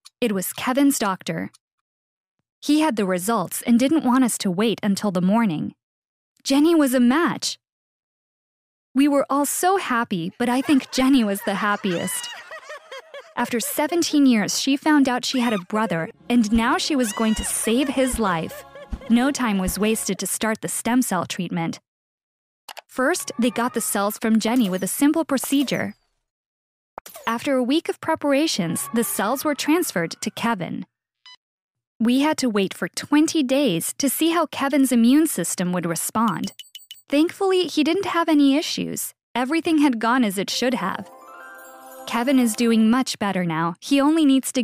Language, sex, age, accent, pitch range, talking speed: English, female, 10-29, American, 205-280 Hz, 165 wpm